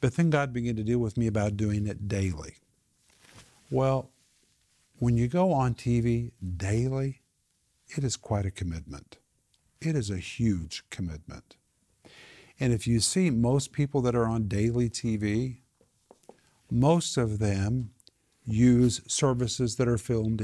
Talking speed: 140 wpm